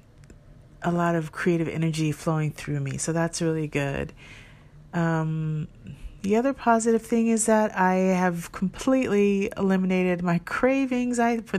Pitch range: 155-190 Hz